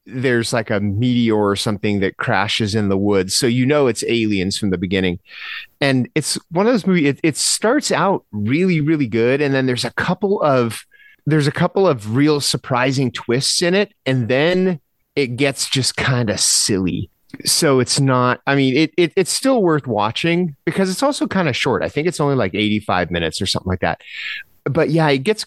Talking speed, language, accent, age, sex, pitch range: 205 wpm, English, American, 30-49, male, 110-150 Hz